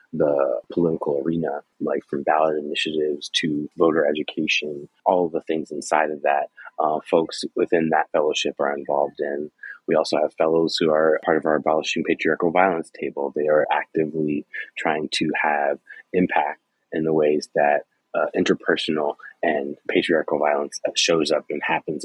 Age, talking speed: 30-49, 160 wpm